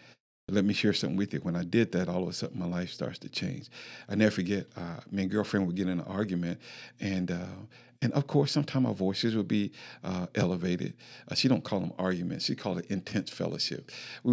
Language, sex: English, male